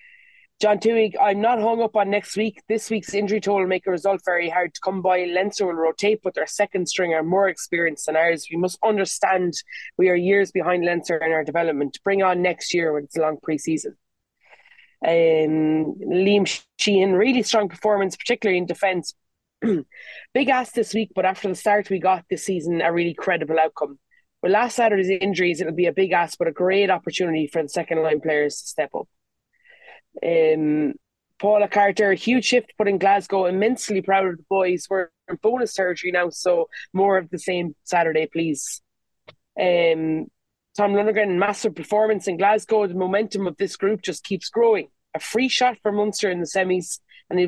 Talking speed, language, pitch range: 190 wpm, English, 170-210 Hz